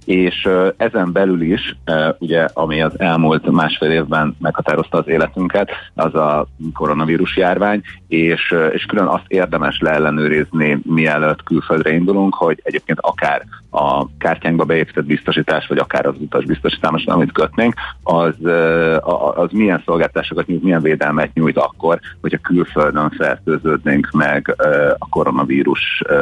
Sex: male